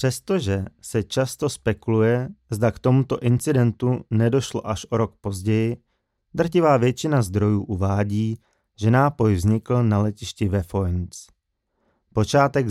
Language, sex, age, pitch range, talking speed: Czech, male, 30-49, 100-120 Hz, 120 wpm